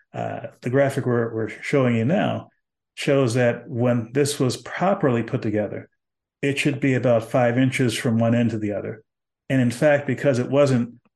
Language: English